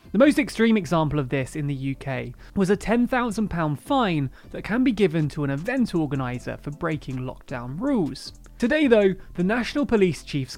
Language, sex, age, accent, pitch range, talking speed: English, male, 30-49, British, 145-225 Hz, 175 wpm